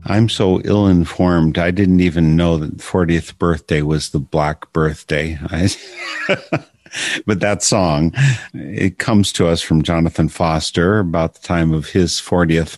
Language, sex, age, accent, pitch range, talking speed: English, male, 50-69, American, 80-95 Hz, 155 wpm